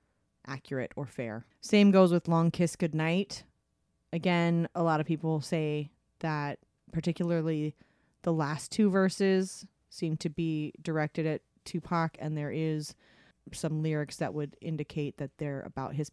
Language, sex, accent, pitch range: English, female, American, 155-195 Hz